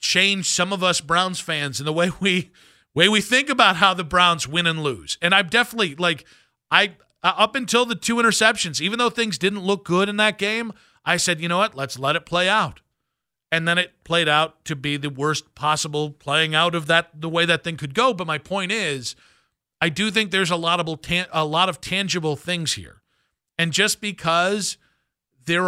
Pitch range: 155-195 Hz